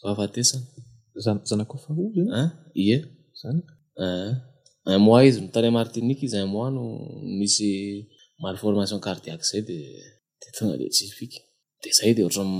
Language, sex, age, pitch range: French, male, 20-39, 105-125 Hz